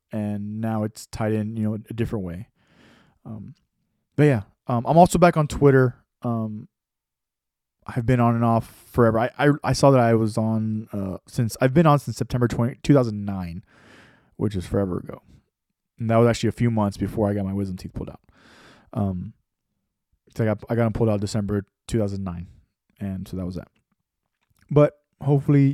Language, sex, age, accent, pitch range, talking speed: English, male, 20-39, American, 110-125 Hz, 185 wpm